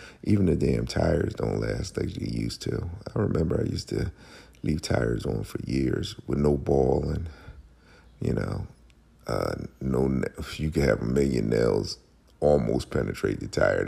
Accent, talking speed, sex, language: American, 165 wpm, male, English